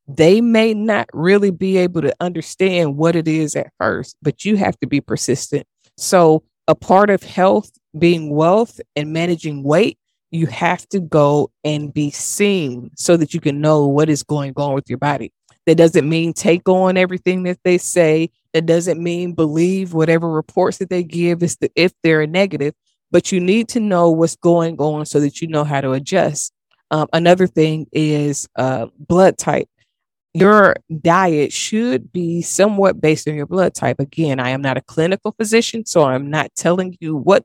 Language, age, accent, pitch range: English, 20-39, American, 150-180 Hz